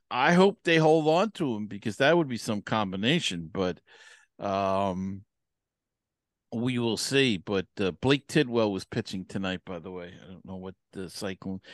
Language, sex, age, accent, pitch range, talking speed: English, male, 50-69, American, 95-130 Hz, 175 wpm